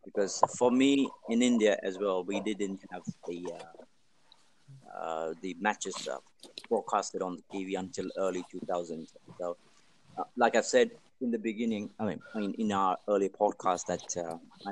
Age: 30-49